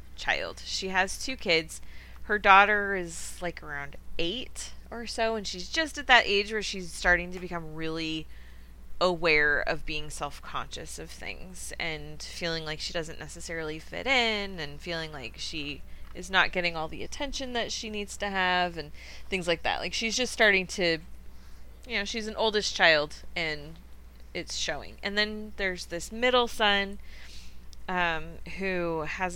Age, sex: 20-39, female